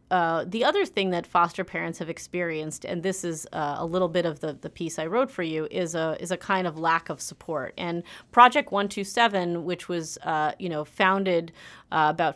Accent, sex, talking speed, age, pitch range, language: American, female, 215 wpm, 30-49, 165-190 Hz, English